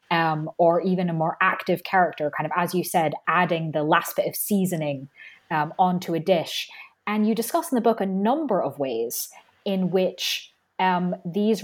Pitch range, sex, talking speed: 165-205 Hz, female, 185 wpm